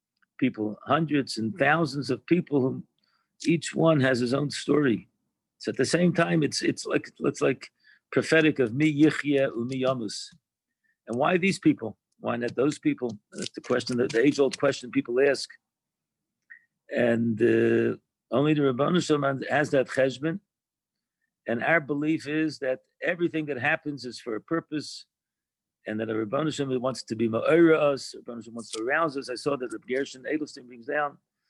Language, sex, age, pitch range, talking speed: English, male, 50-69, 120-155 Hz, 165 wpm